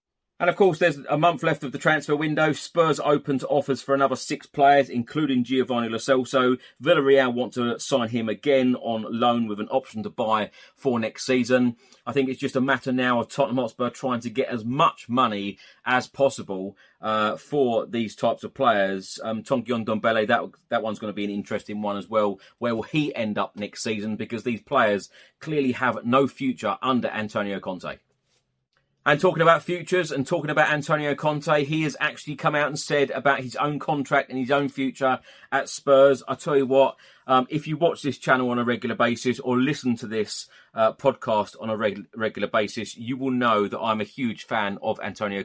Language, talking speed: English, 205 wpm